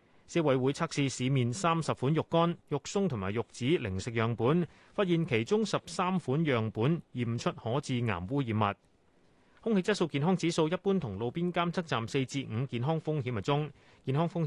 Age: 30-49